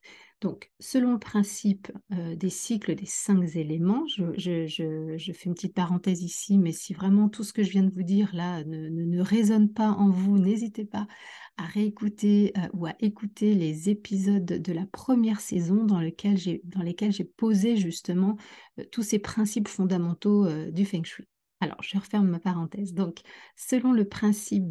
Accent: French